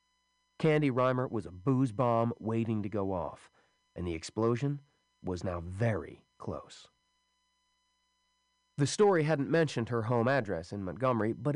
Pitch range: 100-150 Hz